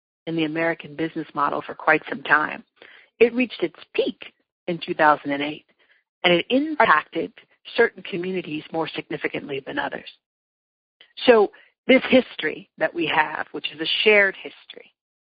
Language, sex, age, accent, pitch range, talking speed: English, female, 40-59, American, 160-220 Hz, 135 wpm